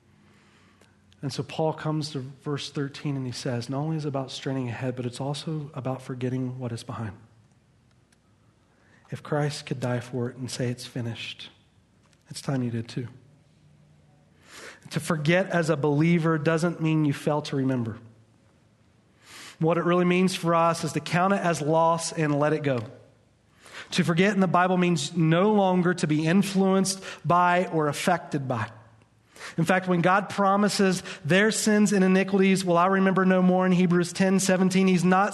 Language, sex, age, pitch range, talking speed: English, male, 40-59, 130-175 Hz, 175 wpm